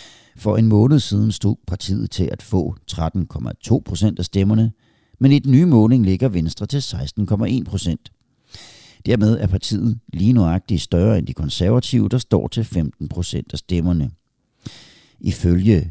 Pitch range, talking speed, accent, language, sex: 85-120 Hz, 150 wpm, native, Danish, male